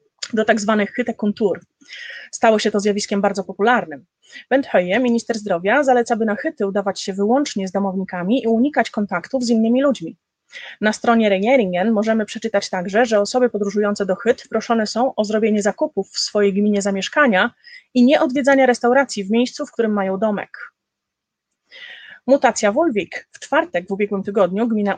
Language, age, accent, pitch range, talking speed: Polish, 30-49, native, 200-245 Hz, 165 wpm